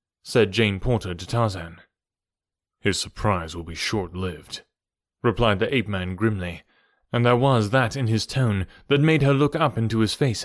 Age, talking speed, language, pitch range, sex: 20-39, 165 wpm, English, 110-160 Hz, male